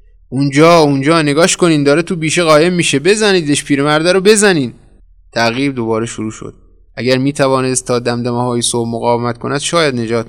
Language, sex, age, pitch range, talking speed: Persian, male, 20-39, 110-130 Hz, 155 wpm